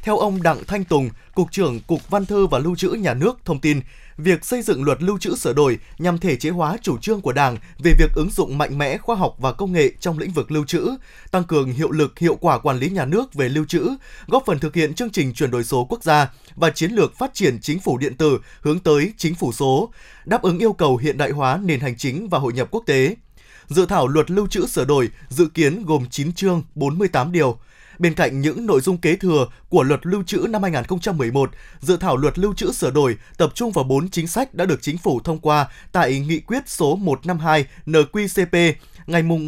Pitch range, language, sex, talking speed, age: 150-190 Hz, Vietnamese, male, 235 wpm, 20-39